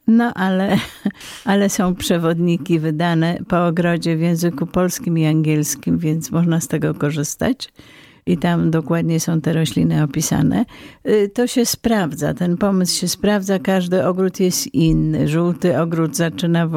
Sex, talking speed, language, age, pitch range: female, 145 wpm, Polish, 50-69, 145-170 Hz